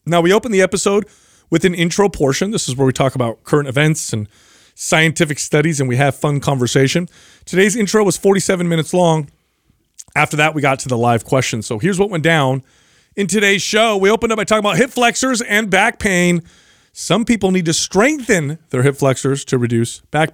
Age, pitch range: 30-49, 150-205 Hz